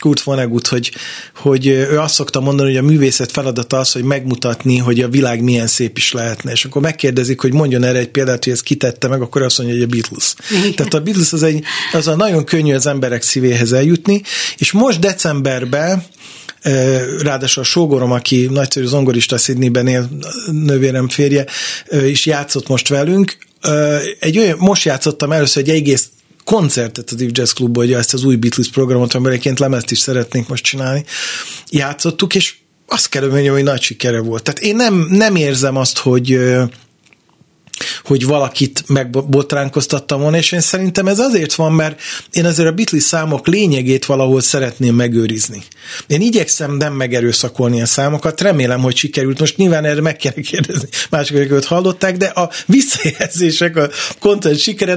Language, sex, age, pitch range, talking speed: Hungarian, male, 40-59, 125-155 Hz, 165 wpm